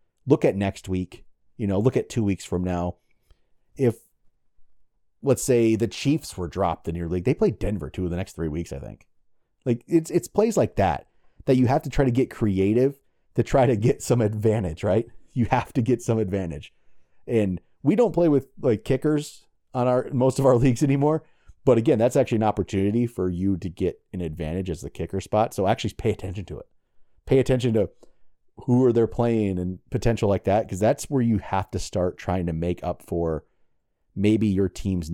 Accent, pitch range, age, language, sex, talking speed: American, 90-125 Hz, 30-49, English, male, 210 wpm